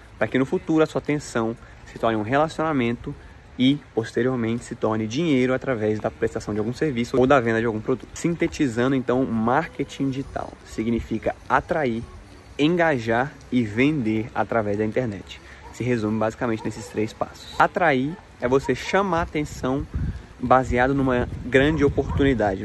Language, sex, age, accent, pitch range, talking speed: Portuguese, male, 20-39, Brazilian, 115-135 Hz, 145 wpm